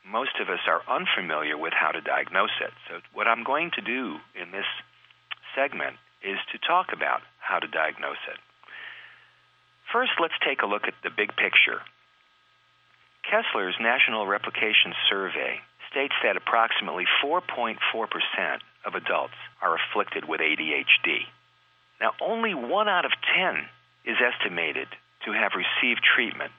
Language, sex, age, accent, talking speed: English, male, 50-69, American, 140 wpm